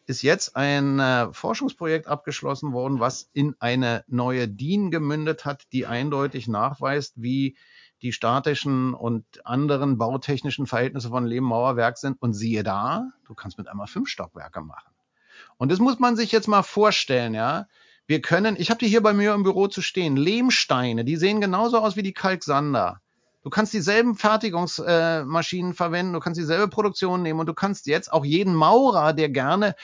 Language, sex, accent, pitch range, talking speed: German, male, German, 125-200 Hz, 175 wpm